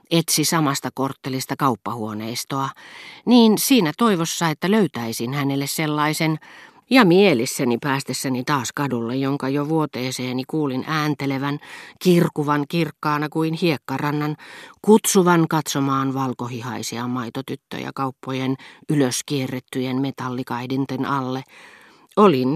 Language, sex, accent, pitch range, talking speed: Finnish, female, native, 130-155 Hz, 90 wpm